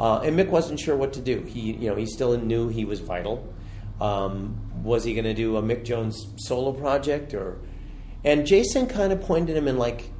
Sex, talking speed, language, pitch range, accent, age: male, 220 wpm, English, 105-145 Hz, American, 40-59